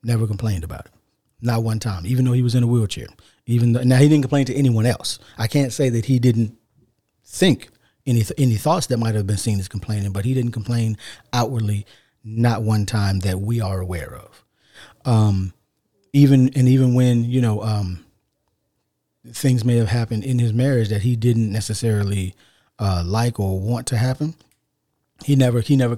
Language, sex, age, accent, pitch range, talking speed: English, male, 40-59, American, 110-130 Hz, 190 wpm